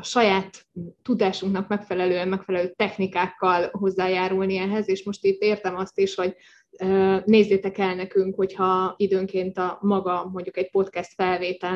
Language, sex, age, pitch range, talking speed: Hungarian, female, 20-39, 185-200 Hz, 135 wpm